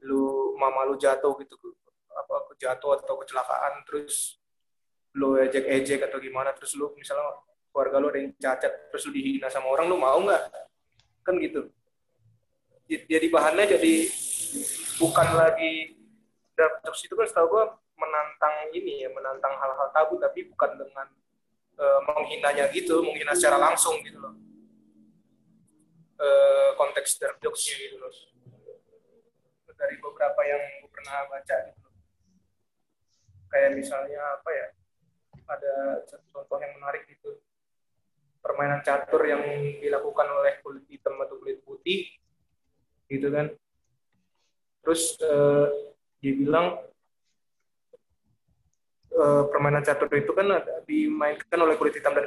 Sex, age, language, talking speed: male, 20-39, Indonesian, 125 wpm